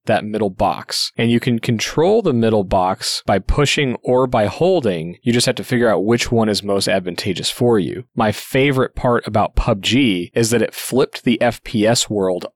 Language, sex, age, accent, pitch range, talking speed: English, male, 30-49, American, 110-130 Hz, 190 wpm